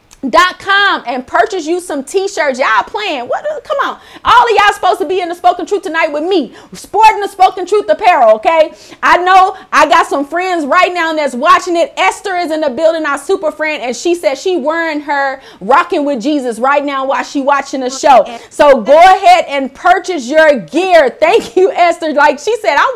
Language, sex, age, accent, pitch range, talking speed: English, female, 30-49, American, 285-355 Hz, 210 wpm